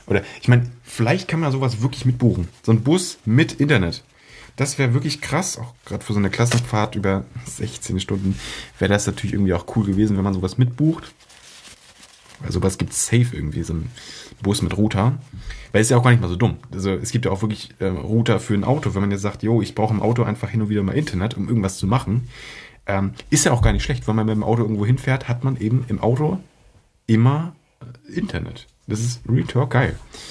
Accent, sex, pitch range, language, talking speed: German, male, 100-130 Hz, German, 230 wpm